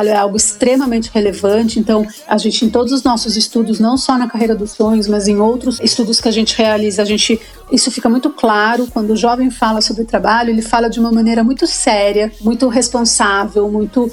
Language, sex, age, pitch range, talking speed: Portuguese, female, 40-59, 215-255 Hz, 205 wpm